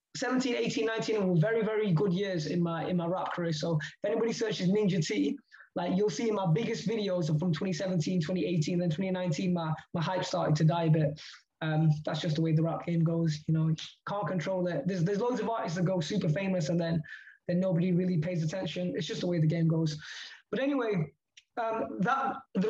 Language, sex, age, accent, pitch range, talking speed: English, male, 20-39, British, 165-220 Hz, 215 wpm